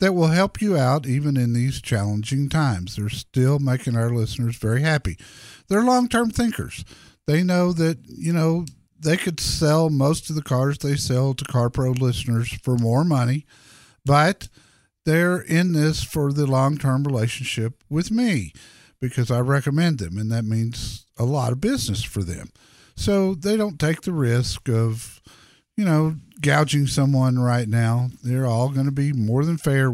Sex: male